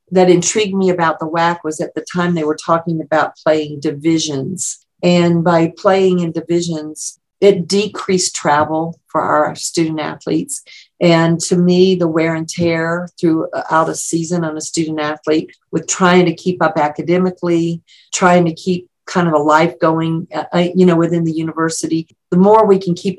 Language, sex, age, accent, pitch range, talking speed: English, female, 50-69, American, 160-180 Hz, 170 wpm